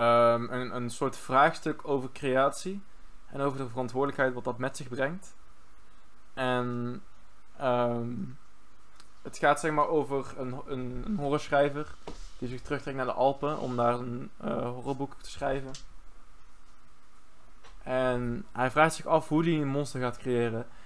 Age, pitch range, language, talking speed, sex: 20-39, 120-140 Hz, Dutch, 145 wpm, male